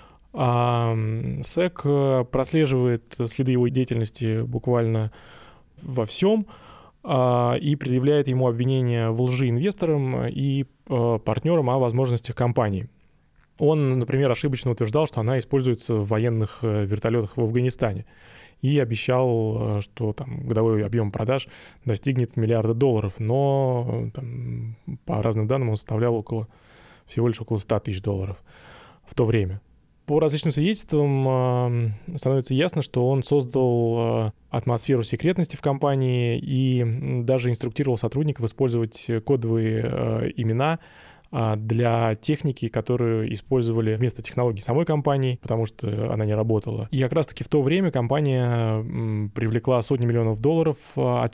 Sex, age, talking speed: male, 20-39, 120 wpm